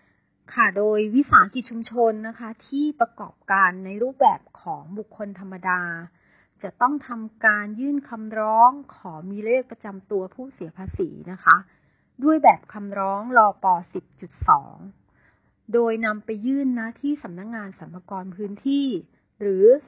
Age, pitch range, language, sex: 30-49, 185-235 Hz, Thai, female